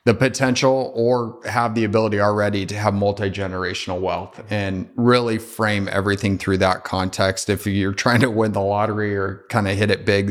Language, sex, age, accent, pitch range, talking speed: English, male, 30-49, American, 100-120 Hz, 180 wpm